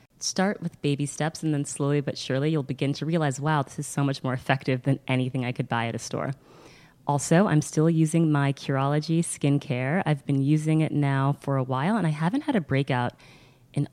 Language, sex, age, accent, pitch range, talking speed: English, female, 20-39, American, 135-160 Hz, 215 wpm